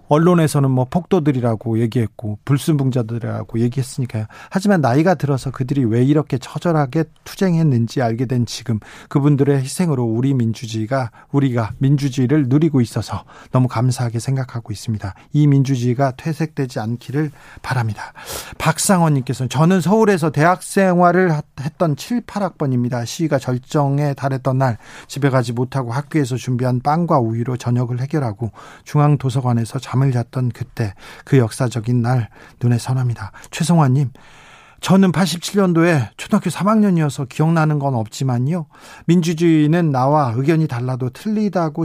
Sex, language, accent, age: male, Korean, native, 40-59